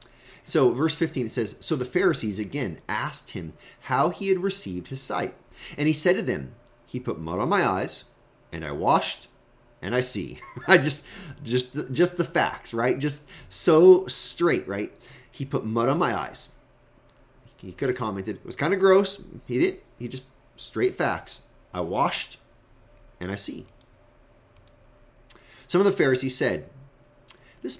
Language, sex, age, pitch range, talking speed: English, male, 30-49, 110-150 Hz, 165 wpm